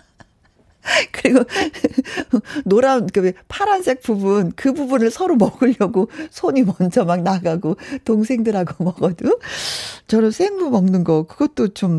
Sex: female